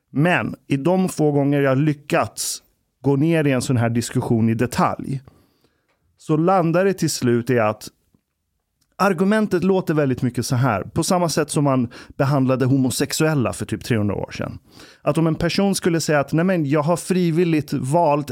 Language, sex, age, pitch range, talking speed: Swedish, male, 30-49, 130-175 Hz, 175 wpm